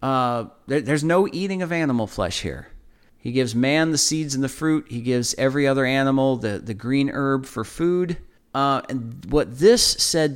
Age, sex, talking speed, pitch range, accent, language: 40-59, male, 185 wpm, 115-155 Hz, American, English